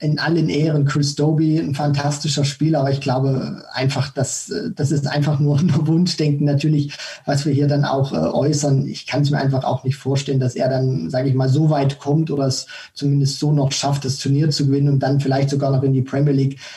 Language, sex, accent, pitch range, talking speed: German, male, German, 140-150 Hz, 220 wpm